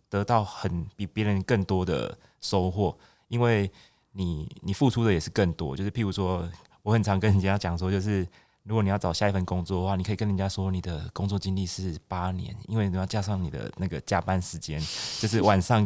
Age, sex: 20-39, male